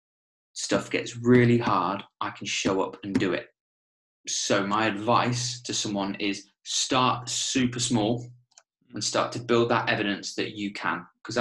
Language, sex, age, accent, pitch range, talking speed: English, male, 20-39, British, 100-120 Hz, 160 wpm